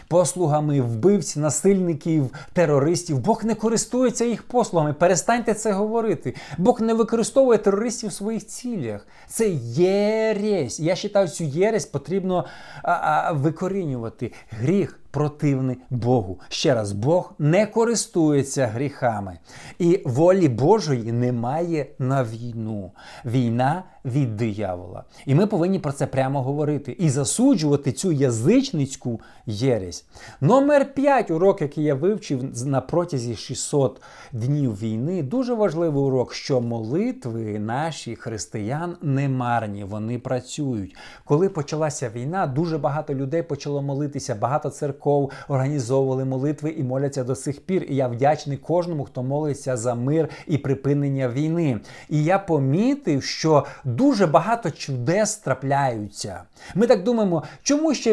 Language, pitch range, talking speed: Ukrainian, 130-185 Hz, 125 wpm